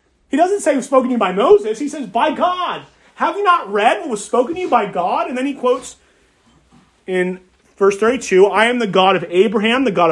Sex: male